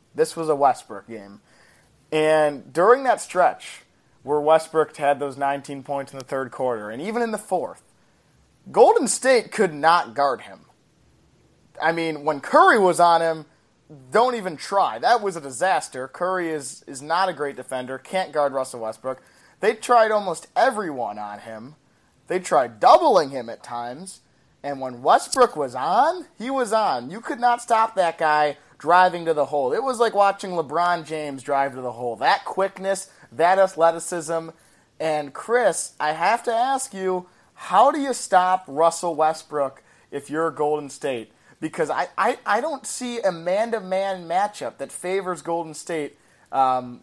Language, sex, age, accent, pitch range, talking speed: English, male, 30-49, American, 140-200 Hz, 165 wpm